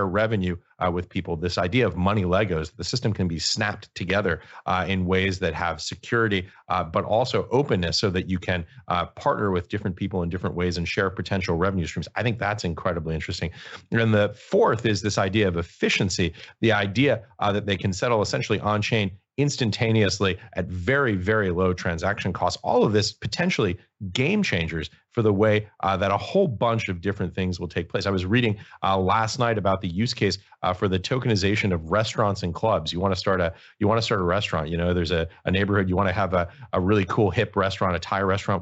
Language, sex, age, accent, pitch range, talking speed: English, male, 40-59, American, 90-105 Hz, 215 wpm